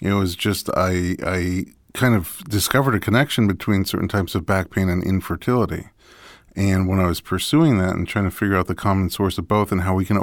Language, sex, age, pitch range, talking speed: English, male, 40-59, 90-105 Hz, 225 wpm